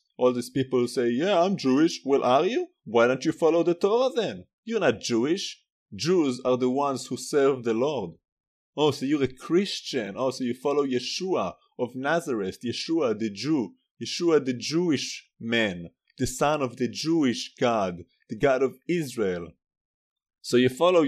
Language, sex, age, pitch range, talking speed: English, male, 30-49, 125-165 Hz, 170 wpm